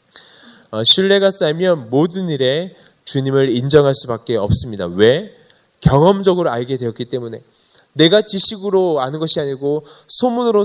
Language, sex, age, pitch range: Korean, male, 20-39, 145-210 Hz